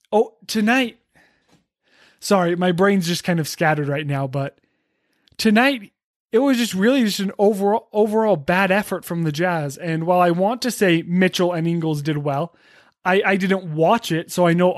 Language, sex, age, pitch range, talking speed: English, male, 20-39, 165-200 Hz, 185 wpm